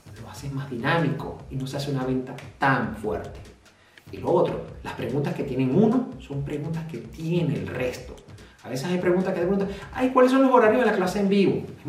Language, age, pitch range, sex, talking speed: Spanish, 40-59, 135-210 Hz, male, 215 wpm